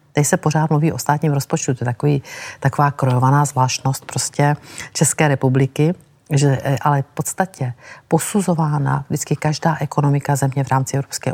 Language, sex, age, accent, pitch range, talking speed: Czech, female, 50-69, native, 130-150 Hz, 145 wpm